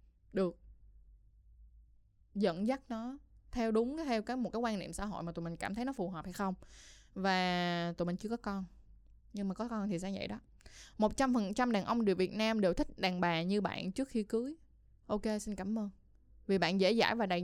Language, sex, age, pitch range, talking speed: Vietnamese, female, 20-39, 180-230 Hz, 225 wpm